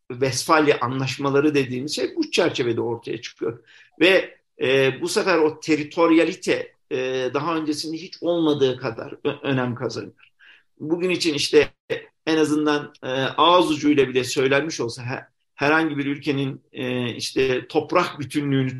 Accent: native